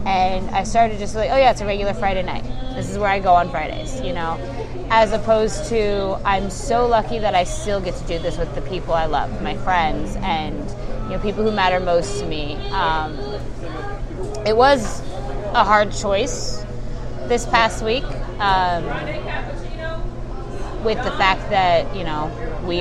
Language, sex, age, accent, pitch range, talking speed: English, female, 20-39, American, 135-205 Hz, 175 wpm